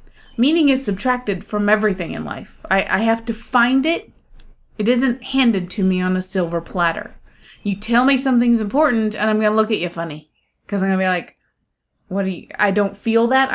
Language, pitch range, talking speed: English, 200-250 Hz, 205 wpm